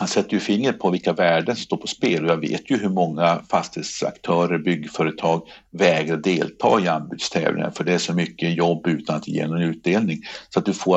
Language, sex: Swedish, male